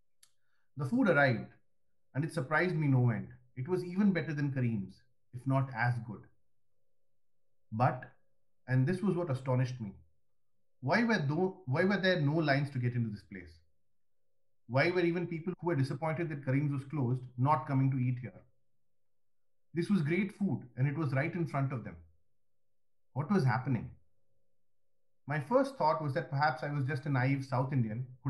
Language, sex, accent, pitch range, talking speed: English, male, Indian, 125-165 Hz, 175 wpm